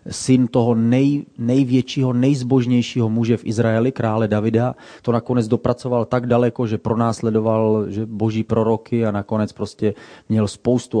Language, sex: Czech, male